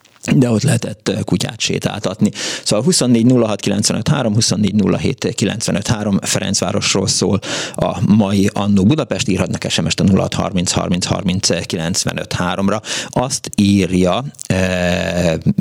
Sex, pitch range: male, 90-120 Hz